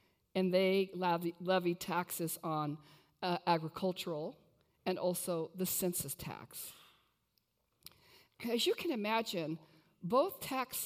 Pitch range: 160-215 Hz